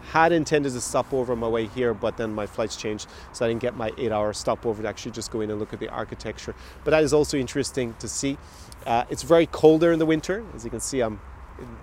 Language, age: English, 30-49